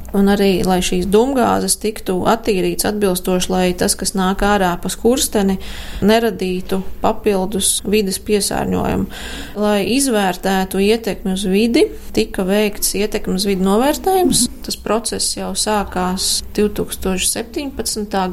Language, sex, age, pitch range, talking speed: Russian, female, 20-39, 190-215 Hz, 110 wpm